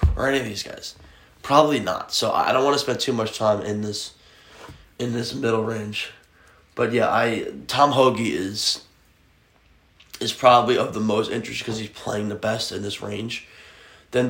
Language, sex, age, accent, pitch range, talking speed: English, male, 20-39, American, 105-125 Hz, 180 wpm